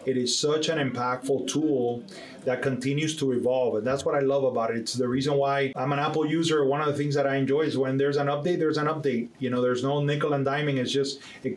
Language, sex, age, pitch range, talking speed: English, male, 30-49, 130-145 Hz, 260 wpm